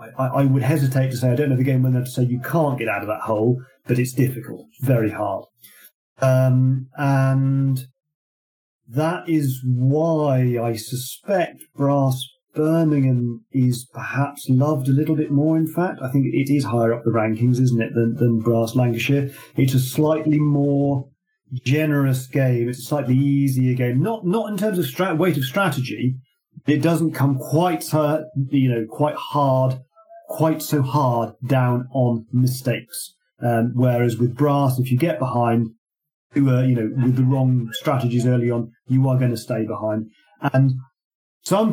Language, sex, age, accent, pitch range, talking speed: English, male, 40-59, British, 125-145 Hz, 170 wpm